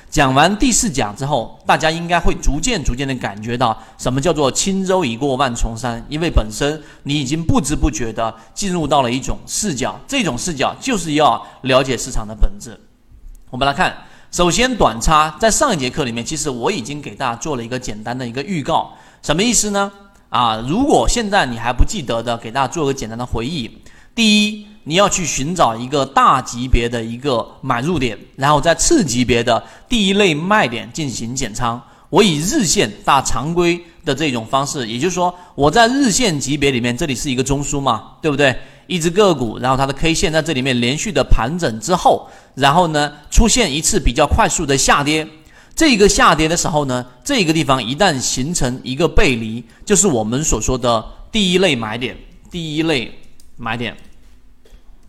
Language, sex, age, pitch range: Chinese, male, 30-49, 120-175 Hz